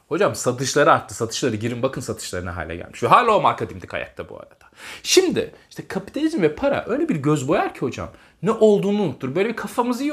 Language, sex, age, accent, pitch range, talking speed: Turkish, male, 30-49, native, 140-220 Hz, 200 wpm